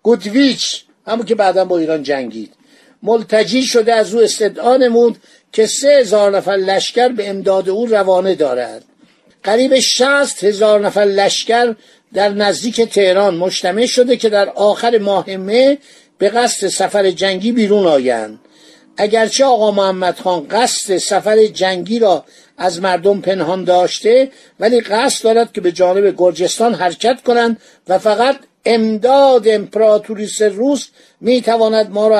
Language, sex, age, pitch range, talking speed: Persian, male, 50-69, 195-240 Hz, 135 wpm